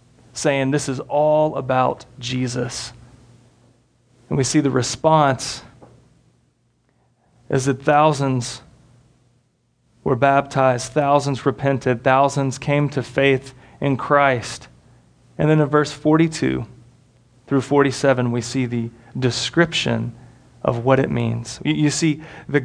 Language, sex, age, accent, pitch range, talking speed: English, male, 30-49, American, 125-145 Hz, 110 wpm